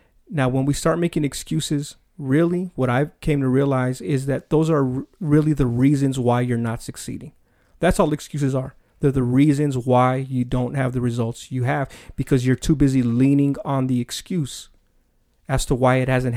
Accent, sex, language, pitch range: American, male, English, 125-145 Hz